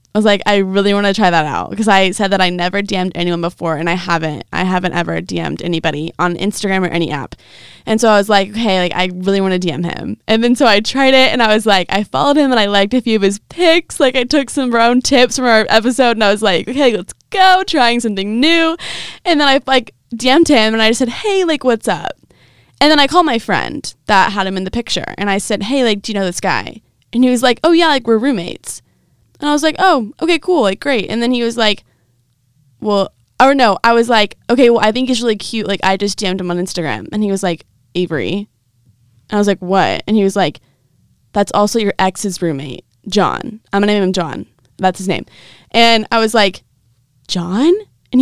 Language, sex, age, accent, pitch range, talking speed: English, female, 20-39, American, 185-255 Hz, 250 wpm